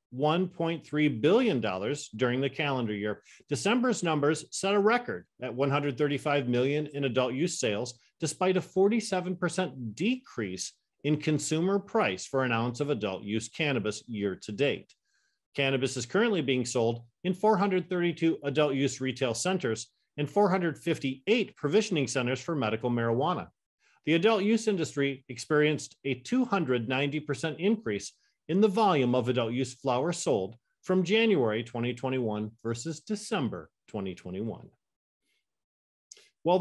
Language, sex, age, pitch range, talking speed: English, male, 40-59, 125-170 Hz, 120 wpm